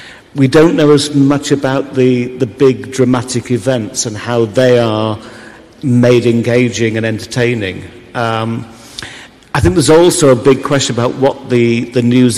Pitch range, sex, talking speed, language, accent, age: 115-130 Hz, male, 155 wpm, Greek, British, 50-69